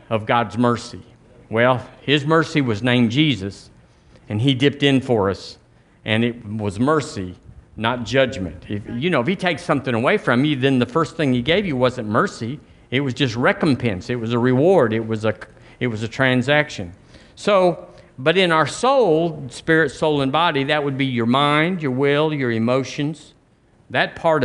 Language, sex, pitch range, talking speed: English, male, 120-150 Hz, 185 wpm